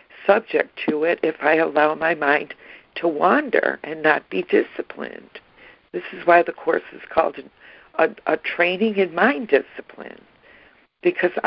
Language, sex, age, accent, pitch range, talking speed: English, female, 60-79, American, 155-190 Hz, 145 wpm